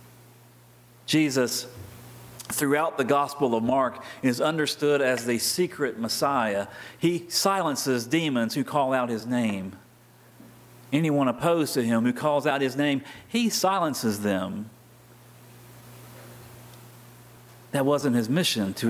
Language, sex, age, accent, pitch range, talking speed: English, male, 40-59, American, 120-145 Hz, 120 wpm